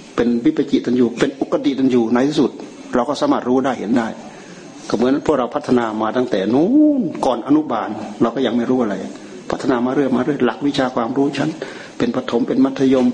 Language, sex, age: Thai, male, 60-79